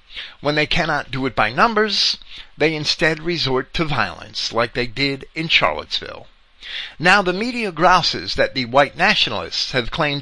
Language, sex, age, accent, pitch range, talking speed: English, male, 50-69, American, 120-175 Hz, 160 wpm